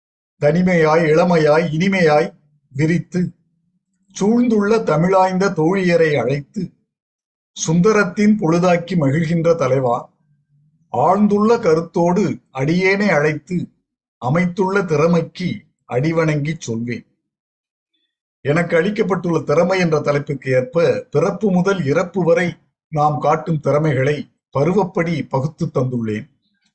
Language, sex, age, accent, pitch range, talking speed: Tamil, male, 50-69, native, 145-205 Hz, 80 wpm